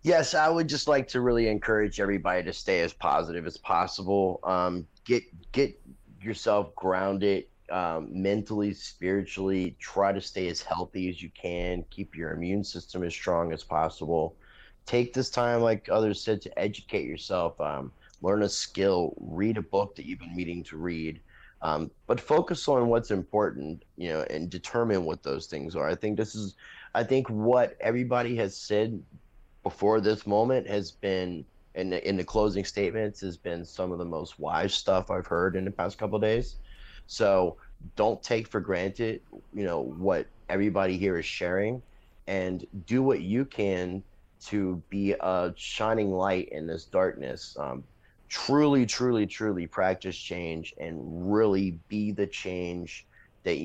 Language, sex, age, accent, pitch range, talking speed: English, male, 30-49, American, 90-110 Hz, 165 wpm